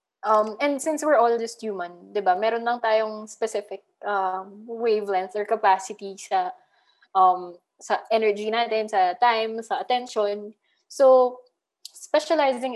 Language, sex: English, female